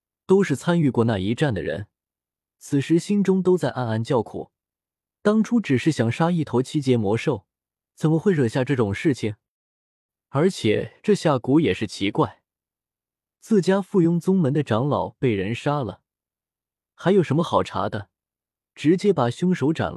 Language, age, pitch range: Chinese, 20-39, 110-170 Hz